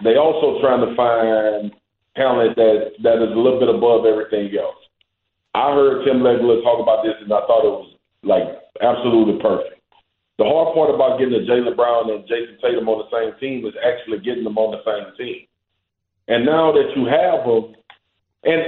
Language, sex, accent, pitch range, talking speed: English, male, American, 110-150 Hz, 195 wpm